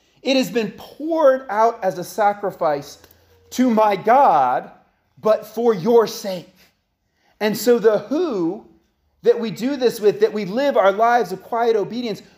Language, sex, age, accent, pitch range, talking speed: English, male, 30-49, American, 200-245 Hz, 155 wpm